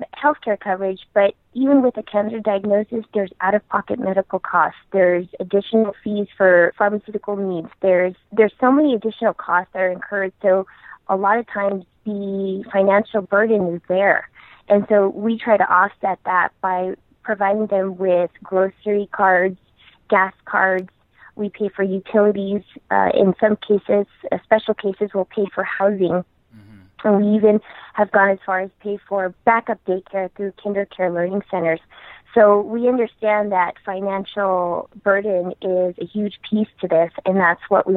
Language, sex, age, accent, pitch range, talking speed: English, female, 20-39, American, 185-215 Hz, 160 wpm